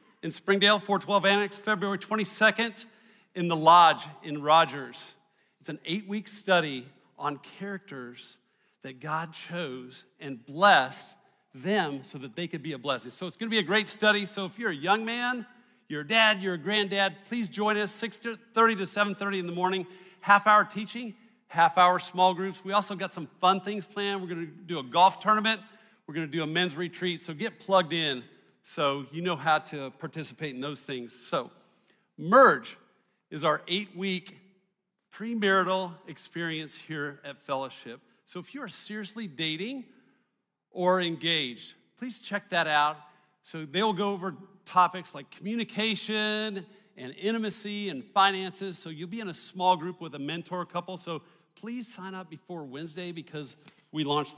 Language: English